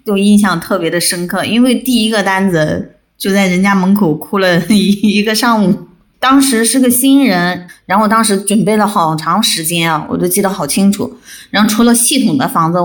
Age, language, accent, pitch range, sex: 20-39, Chinese, native, 185-245 Hz, female